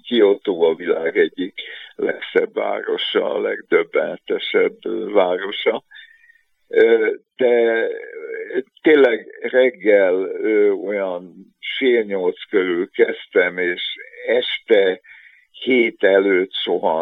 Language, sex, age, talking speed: Hungarian, male, 60-79, 70 wpm